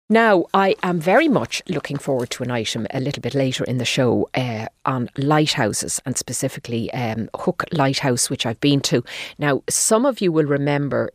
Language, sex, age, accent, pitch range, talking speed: English, female, 30-49, Irish, 130-165 Hz, 190 wpm